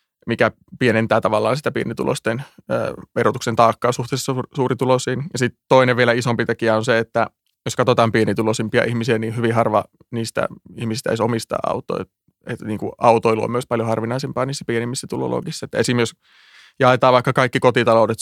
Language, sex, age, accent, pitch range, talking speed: Finnish, male, 20-39, native, 110-125 Hz, 150 wpm